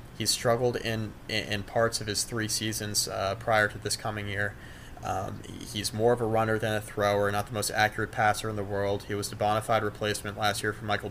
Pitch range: 100-110 Hz